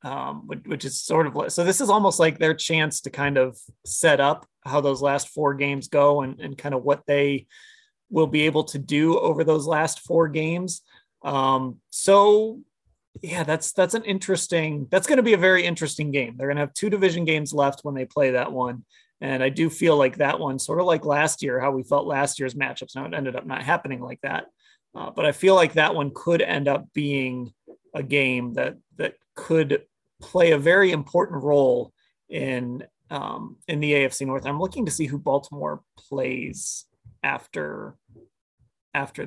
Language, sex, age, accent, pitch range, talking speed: English, male, 30-49, American, 135-165 Hz, 195 wpm